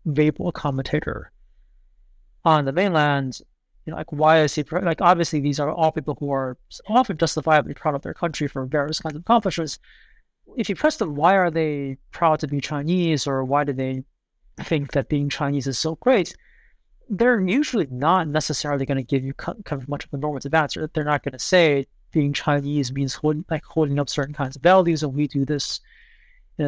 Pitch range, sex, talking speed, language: 140-170 Hz, male, 195 wpm, English